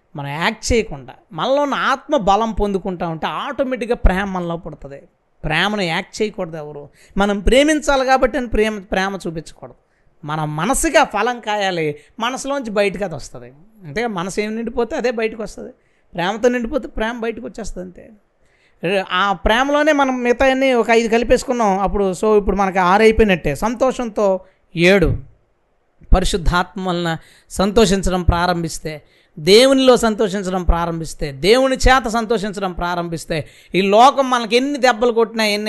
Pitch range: 170-240 Hz